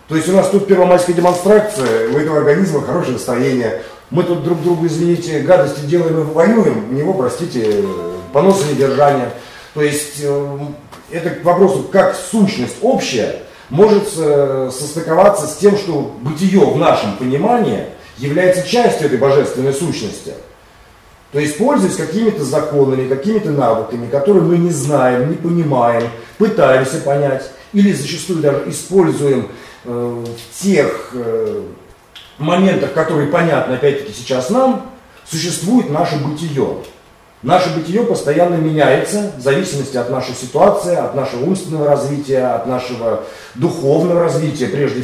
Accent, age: native, 40-59